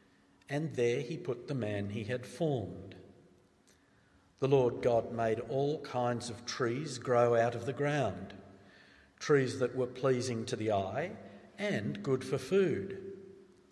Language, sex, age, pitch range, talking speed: English, male, 50-69, 100-145 Hz, 145 wpm